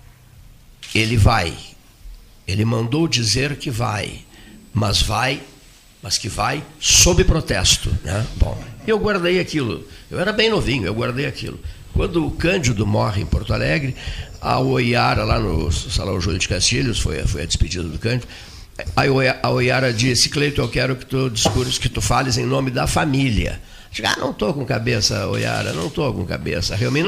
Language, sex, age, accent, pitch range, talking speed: Portuguese, male, 60-79, Brazilian, 100-130 Hz, 170 wpm